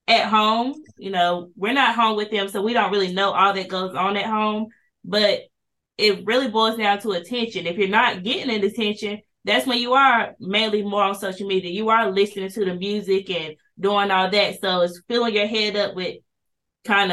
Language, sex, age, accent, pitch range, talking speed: English, female, 20-39, American, 190-220 Hz, 210 wpm